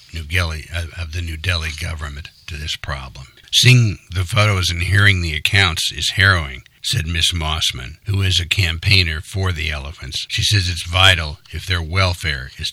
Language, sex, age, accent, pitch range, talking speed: English, male, 60-79, American, 80-100 Hz, 165 wpm